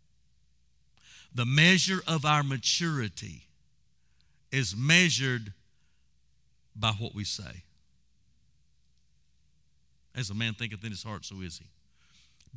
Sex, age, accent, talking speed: male, 50-69, American, 100 wpm